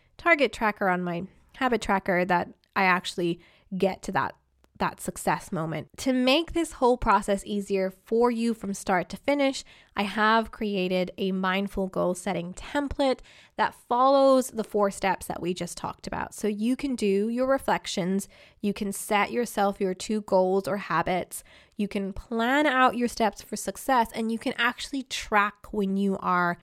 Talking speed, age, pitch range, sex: 170 wpm, 20-39, 185-235 Hz, female